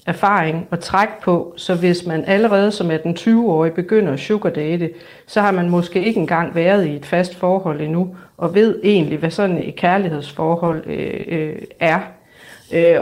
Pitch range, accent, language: 170-210 Hz, native, Danish